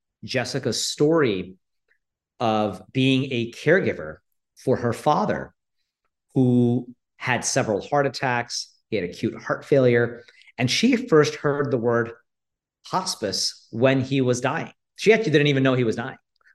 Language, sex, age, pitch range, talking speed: English, male, 40-59, 115-140 Hz, 140 wpm